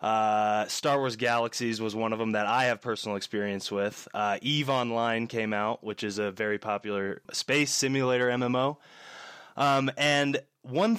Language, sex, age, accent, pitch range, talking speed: English, male, 20-39, American, 115-150 Hz, 165 wpm